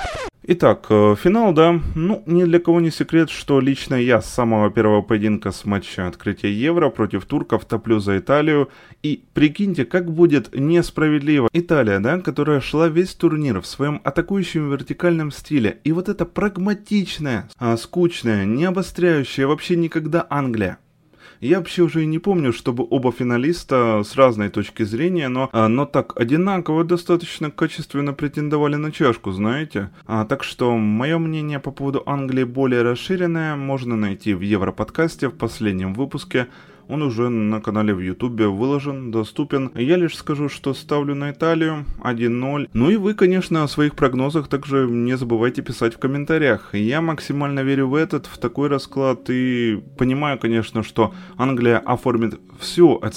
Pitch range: 115-160 Hz